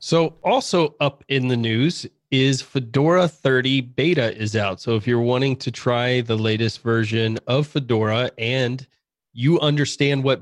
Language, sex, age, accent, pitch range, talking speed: English, male, 30-49, American, 115-135 Hz, 155 wpm